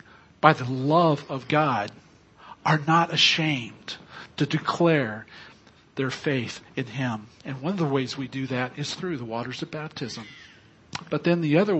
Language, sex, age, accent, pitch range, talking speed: English, male, 50-69, American, 110-145 Hz, 165 wpm